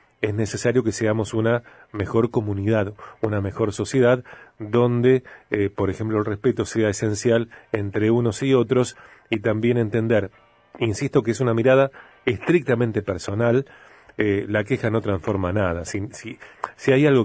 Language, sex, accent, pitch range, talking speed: Spanish, male, Argentinian, 105-125 Hz, 150 wpm